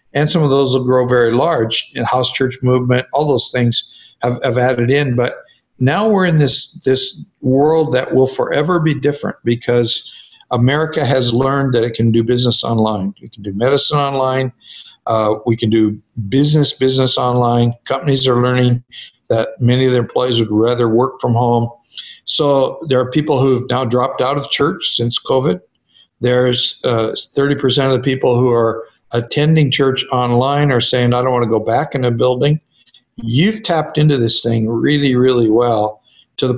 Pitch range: 120-140 Hz